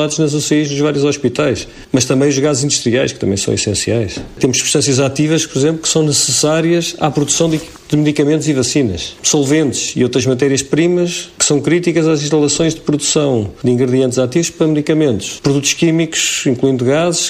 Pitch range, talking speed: 130-155 Hz, 175 wpm